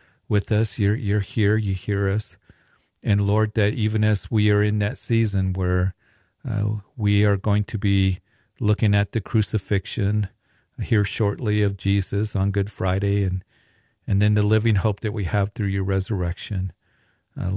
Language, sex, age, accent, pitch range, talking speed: English, male, 50-69, American, 95-110 Hz, 165 wpm